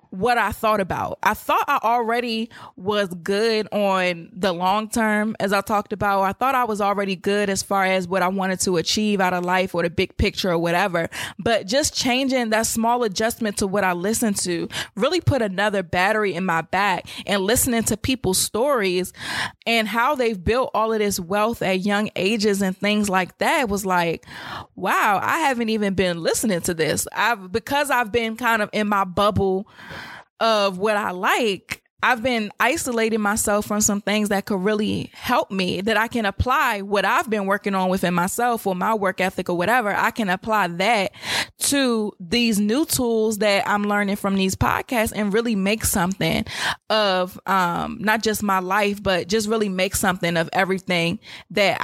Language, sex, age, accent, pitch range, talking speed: English, female, 20-39, American, 190-225 Hz, 190 wpm